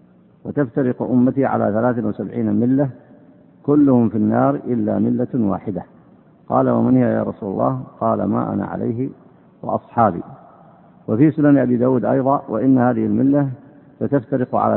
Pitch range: 105-130 Hz